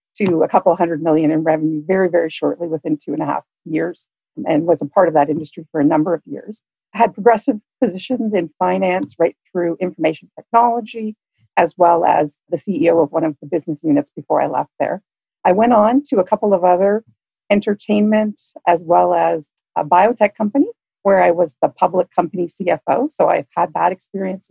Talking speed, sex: 195 wpm, female